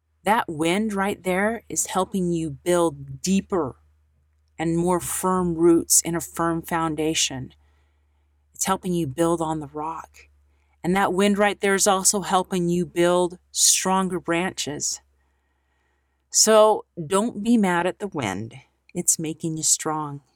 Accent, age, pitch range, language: American, 40-59, 155-200 Hz, English